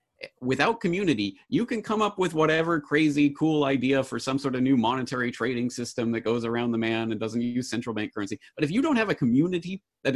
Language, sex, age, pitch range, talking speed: English, male, 30-49, 105-145 Hz, 225 wpm